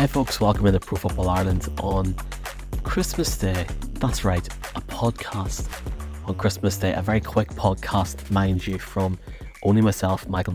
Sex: male